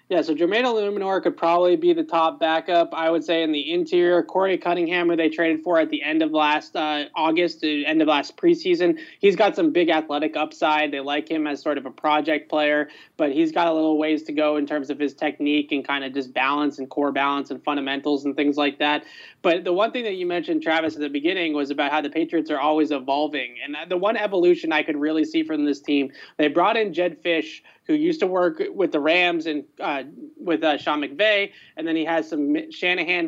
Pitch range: 150-175 Hz